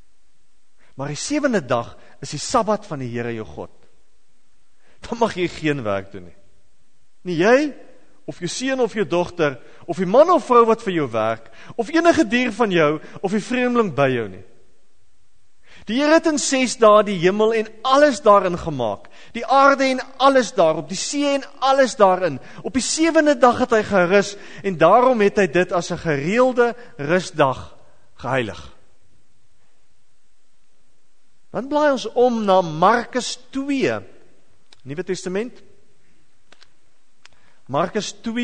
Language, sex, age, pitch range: English, male, 40-59, 175-255 Hz